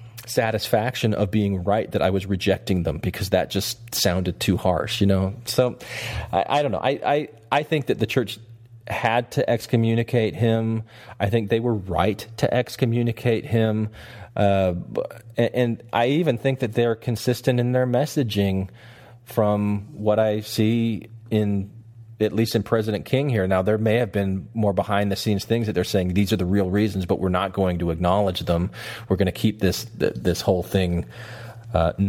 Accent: American